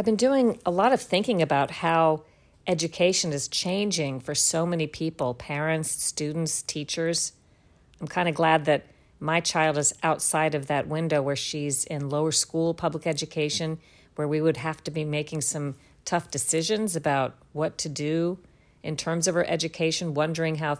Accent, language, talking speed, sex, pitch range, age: American, English, 170 wpm, female, 150-170 Hz, 50-69